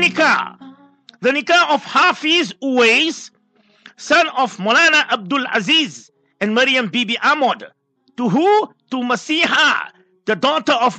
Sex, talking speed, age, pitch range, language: male, 120 wpm, 50-69, 205-275 Hz, English